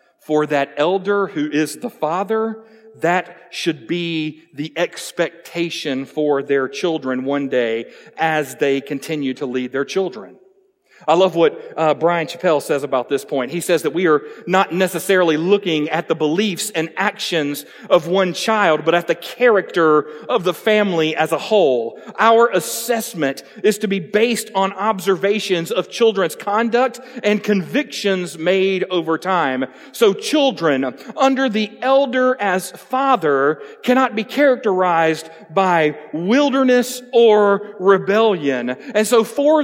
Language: English